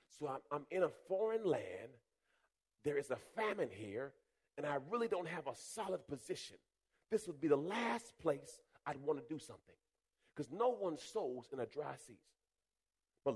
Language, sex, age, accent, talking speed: English, male, 40-59, American, 180 wpm